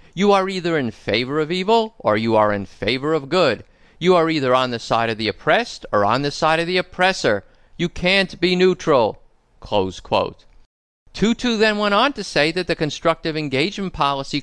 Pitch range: 130-195 Hz